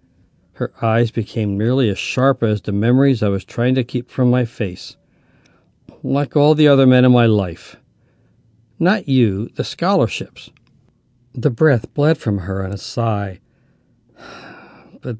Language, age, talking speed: English, 60-79, 150 wpm